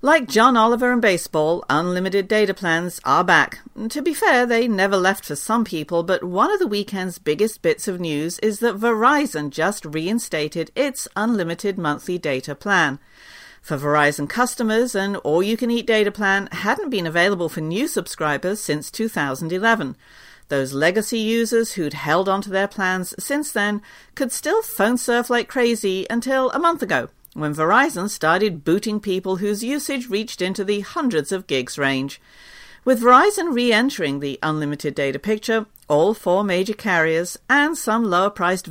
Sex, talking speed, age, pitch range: female, 160 wpm, 50-69, 160-235 Hz